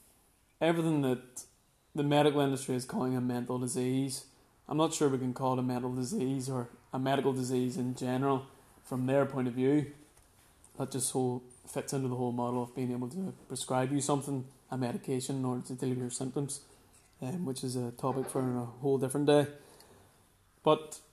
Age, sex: 20-39, male